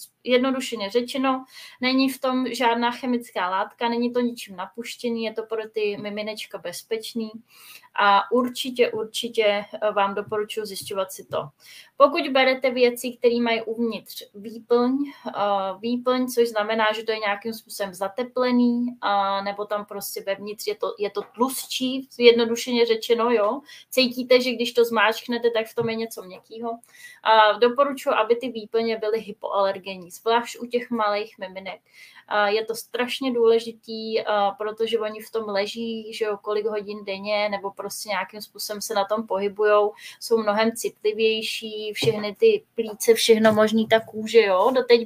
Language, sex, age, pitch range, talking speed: Czech, female, 20-39, 210-240 Hz, 145 wpm